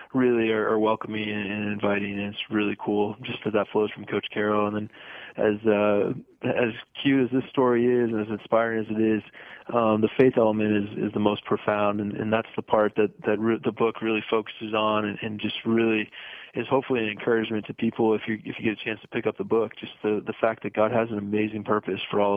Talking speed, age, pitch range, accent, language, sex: 245 wpm, 20-39, 105-115 Hz, American, English, male